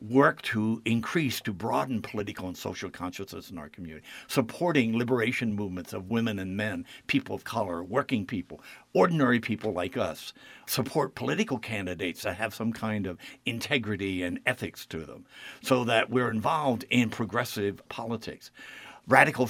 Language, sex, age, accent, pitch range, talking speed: English, male, 60-79, American, 105-135 Hz, 150 wpm